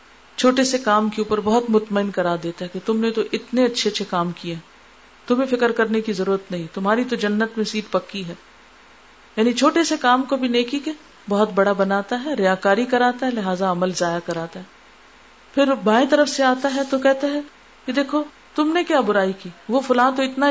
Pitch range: 195-260 Hz